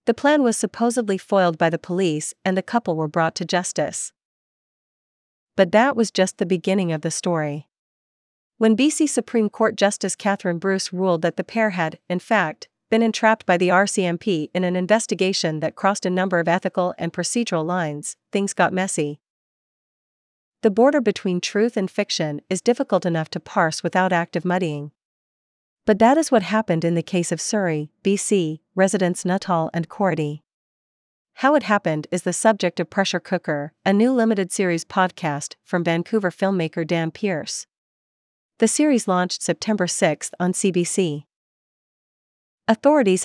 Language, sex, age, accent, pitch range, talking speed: English, female, 40-59, American, 170-205 Hz, 160 wpm